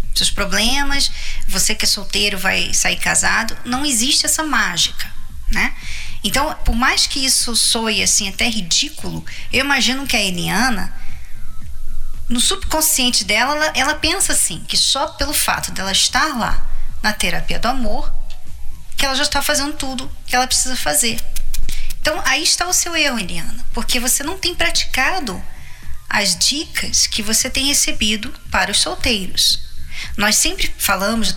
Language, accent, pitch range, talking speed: Portuguese, Brazilian, 215-285 Hz, 155 wpm